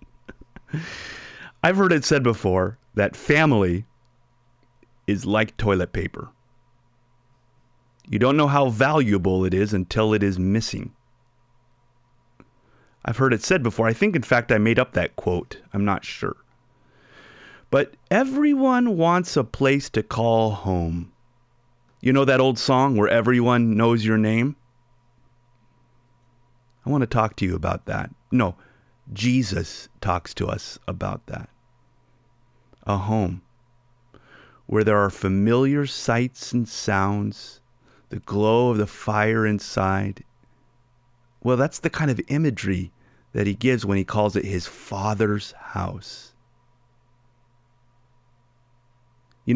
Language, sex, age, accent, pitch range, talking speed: English, male, 30-49, American, 105-125 Hz, 125 wpm